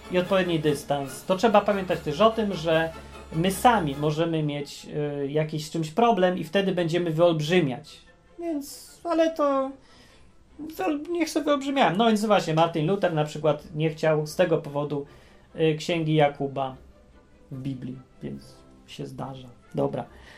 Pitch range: 150-210 Hz